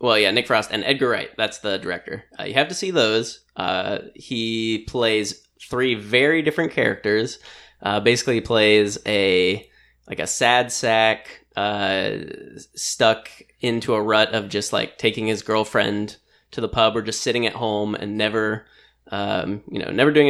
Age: 10-29